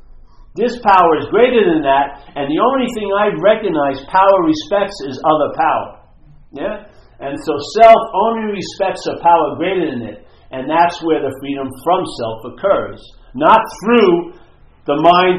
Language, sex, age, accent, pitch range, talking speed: English, male, 50-69, American, 130-180 Hz, 155 wpm